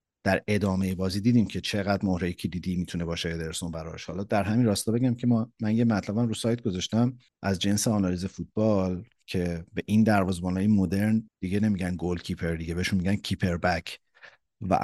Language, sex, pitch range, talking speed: Persian, male, 90-110 Hz, 180 wpm